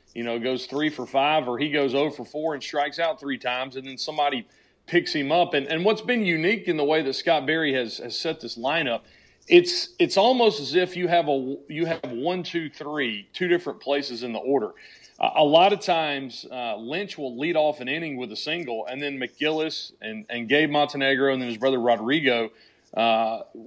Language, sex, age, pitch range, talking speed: English, male, 40-59, 130-165 Hz, 220 wpm